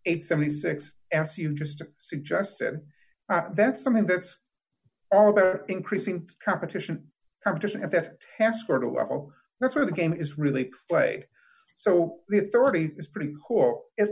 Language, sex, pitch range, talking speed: English, male, 160-215 Hz, 140 wpm